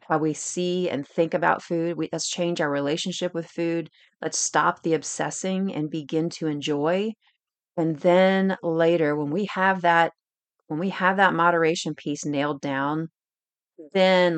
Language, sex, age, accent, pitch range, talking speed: English, female, 30-49, American, 145-175 Hz, 160 wpm